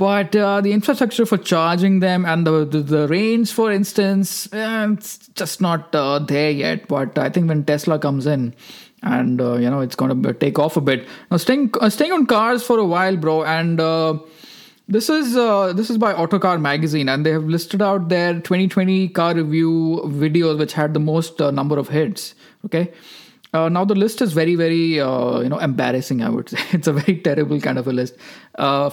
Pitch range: 150-205 Hz